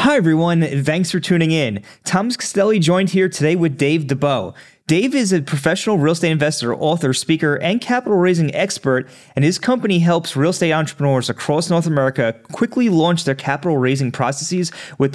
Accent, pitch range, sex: American, 130-170 Hz, male